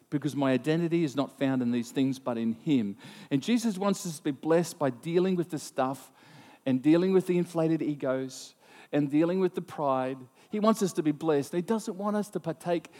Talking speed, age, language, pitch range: 215 wpm, 50-69, English, 135-175 Hz